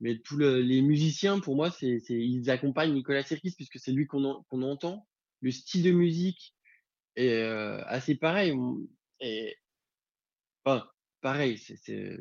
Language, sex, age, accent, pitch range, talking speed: French, male, 20-39, French, 125-160 Hz, 165 wpm